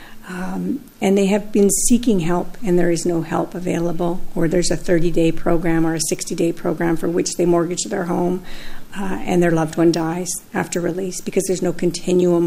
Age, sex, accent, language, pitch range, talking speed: 50-69, female, American, English, 175-230 Hz, 190 wpm